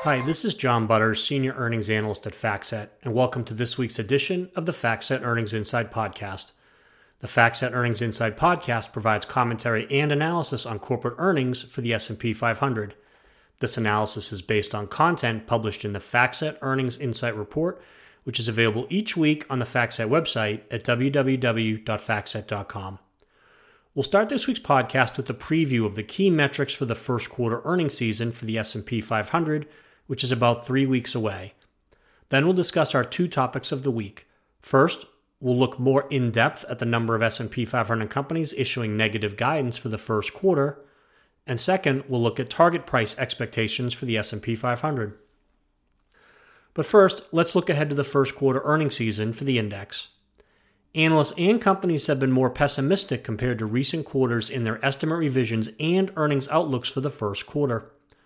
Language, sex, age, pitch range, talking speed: English, male, 30-49, 115-145 Hz, 170 wpm